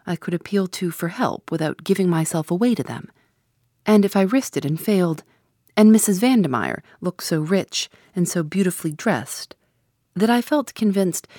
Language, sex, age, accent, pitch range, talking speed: English, female, 40-59, American, 150-195 Hz, 175 wpm